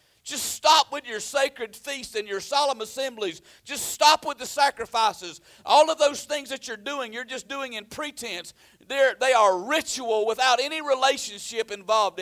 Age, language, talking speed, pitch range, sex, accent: 50-69, English, 170 wpm, 205-275 Hz, male, American